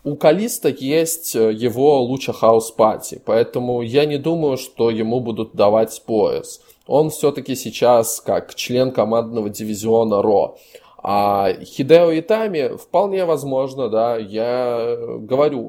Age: 20-39